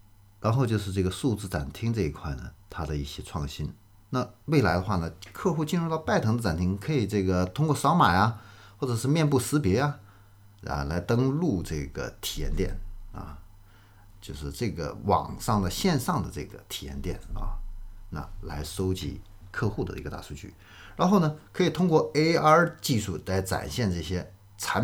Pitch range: 85-105 Hz